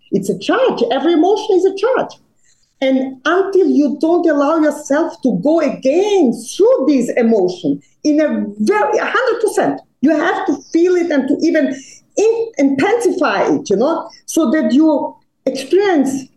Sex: female